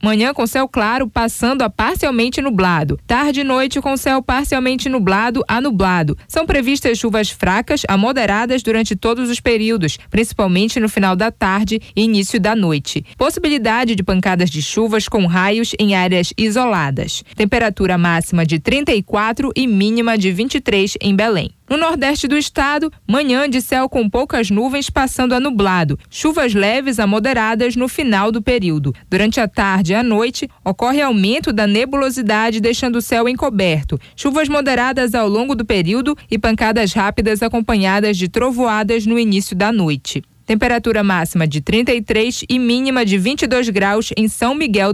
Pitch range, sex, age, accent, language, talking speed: 200-255 Hz, female, 20-39, Brazilian, Portuguese, 160 wpm